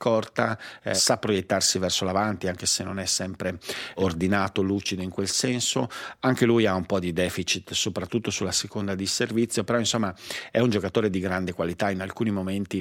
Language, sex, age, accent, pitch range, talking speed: Italian, male, 50-69, native, 90-110 Hz, 185 wpm